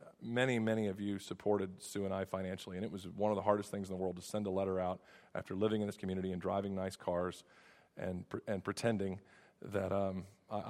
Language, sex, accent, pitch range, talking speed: English, male, American, 100-125 Hz, 225 wpm